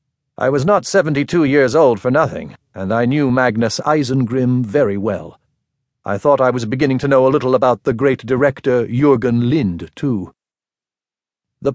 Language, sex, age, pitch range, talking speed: English, male, 50-69, 115-145 Hz, 165 wpm